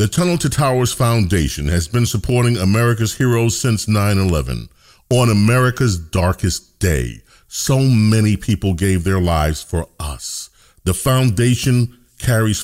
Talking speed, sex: 130 wpm, male